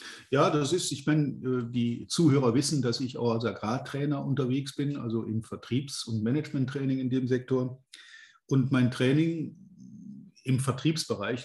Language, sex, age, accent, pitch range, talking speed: German, male, 50-69, German, 115-145 Hz, 145 wpm